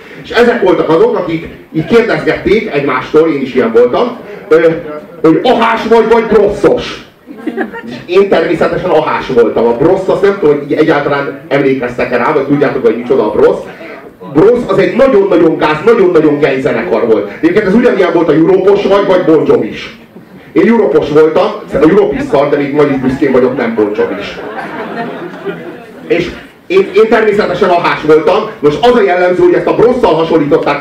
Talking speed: 160 wpm